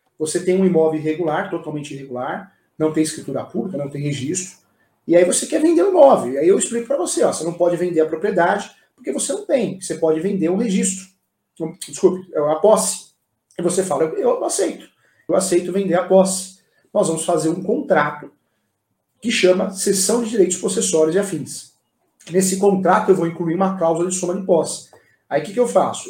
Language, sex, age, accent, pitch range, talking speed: Portuguese, male, 40-59, Brazilian, 155-195 Hz, 205 wpm